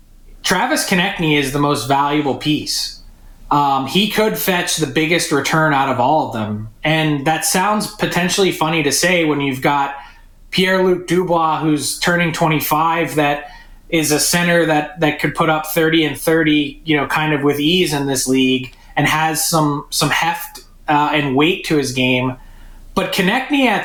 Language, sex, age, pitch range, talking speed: English, male, 20-39, 150-185 Hz, 175 wpm